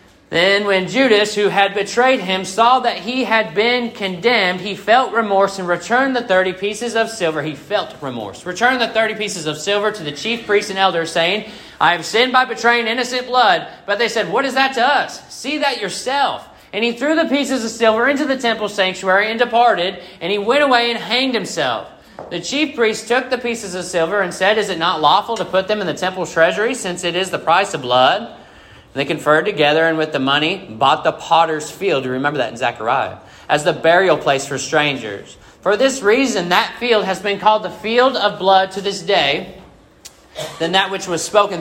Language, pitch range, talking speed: English, 140-220 Hz, 215 wpm